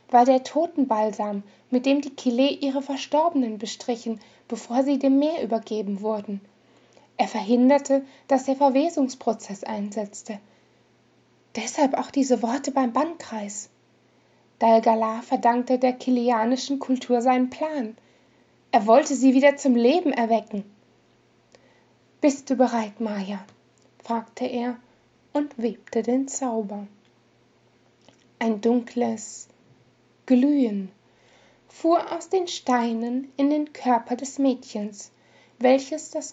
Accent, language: German, German